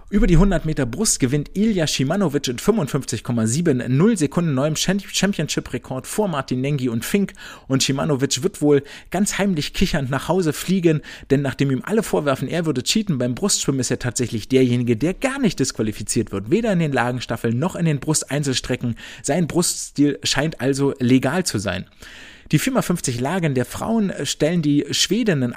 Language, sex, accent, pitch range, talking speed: German, male, German, 125-170 Hz, 165 wpm